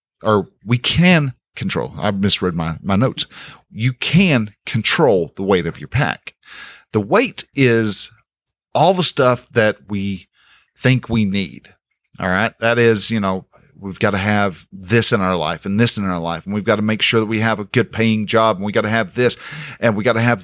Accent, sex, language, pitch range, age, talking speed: American, male, English, 105-140 Hz, 50-69, 210 wpm